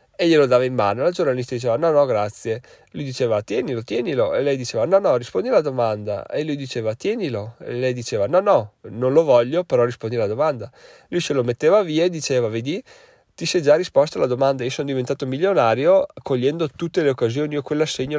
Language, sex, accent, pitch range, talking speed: Italian, male, native, 120-150 Hz, 210 wpm